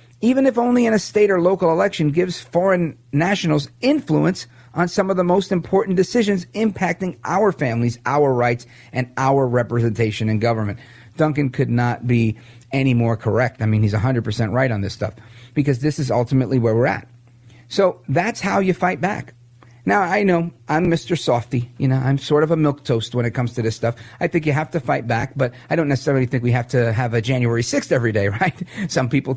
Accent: American